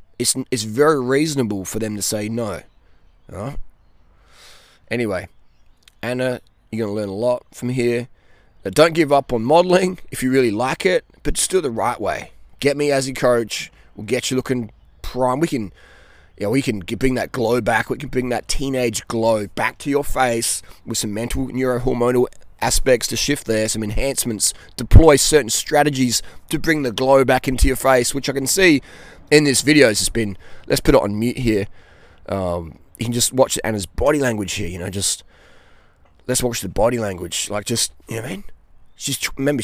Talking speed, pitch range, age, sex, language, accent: 200 wpm, 105-135 Hz, 20-39, male, English, Australian